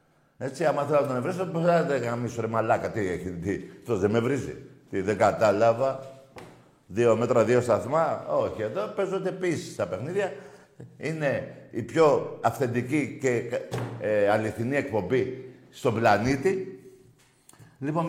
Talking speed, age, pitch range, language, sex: 140 wpm, 50-69, 130-175 Hz, Greek, male